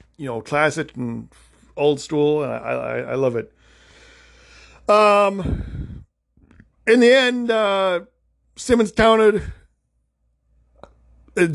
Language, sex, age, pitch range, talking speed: English, male, 50-69, 150-225 Hz, 105 wpm